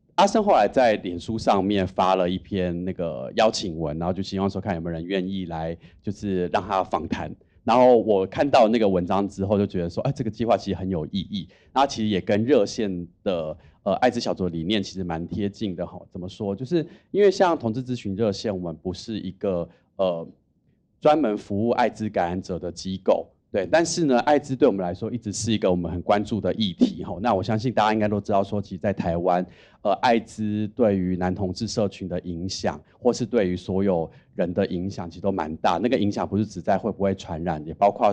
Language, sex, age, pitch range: Chinese, male, 30-49, 90-115 Hz